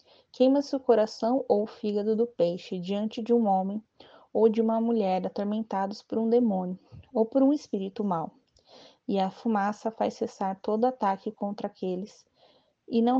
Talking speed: 165 wpm